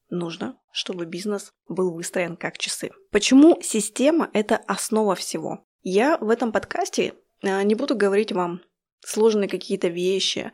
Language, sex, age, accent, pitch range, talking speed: Russian, female, 20-39, native, 190-235 Hz, 130 wpm